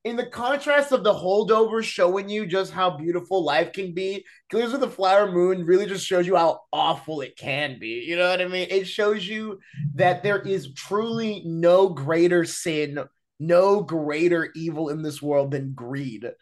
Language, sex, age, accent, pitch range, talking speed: English, male, 20-39, American, 140-190 Hz, 185 wpm